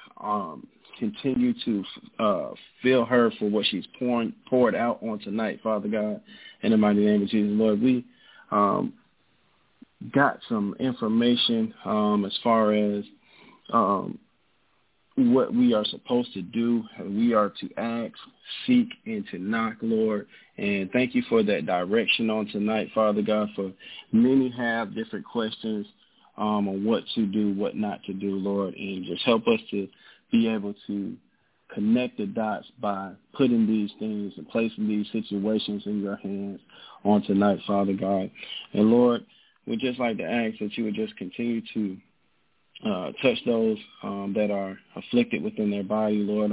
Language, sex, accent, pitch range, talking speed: English, male, American, 100-115 Hz, 160 wpm